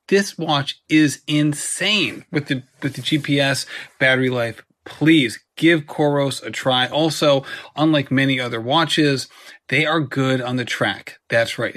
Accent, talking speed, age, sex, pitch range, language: American, 150 wpm, 30-49, male, 125-155 Hz, English